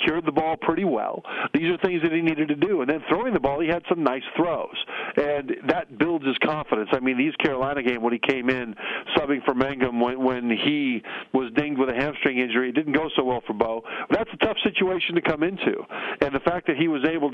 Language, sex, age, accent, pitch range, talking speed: English, male, 50-69, American, 130-170 Hz, 240 wpm